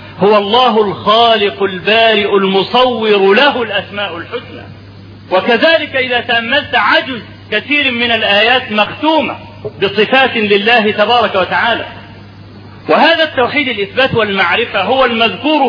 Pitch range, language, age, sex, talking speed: 180-245 Hz, Arabic, 40-59, male, 100 wpm